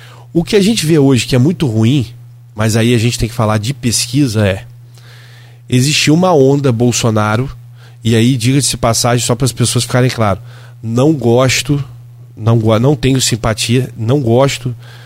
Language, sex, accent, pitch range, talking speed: Portuguese, male, Brazilian, 115-130 Hz, 165 wpm